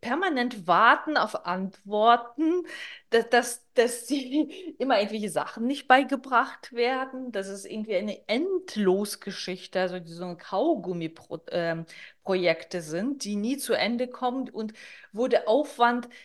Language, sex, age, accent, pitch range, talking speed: German, female, 20-39, German, 185-250 Hz, 120 wpm